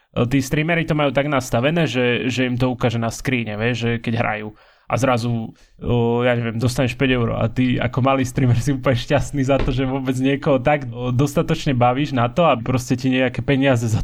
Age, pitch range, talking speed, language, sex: 20-39, 120-145 Hz, 210 wpm, Slovak, male